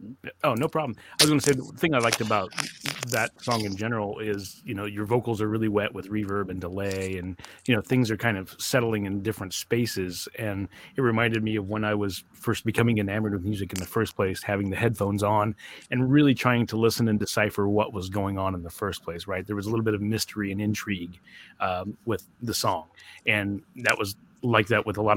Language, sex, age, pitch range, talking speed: English, male, 30-49, 100-115 Hz, 235 wpm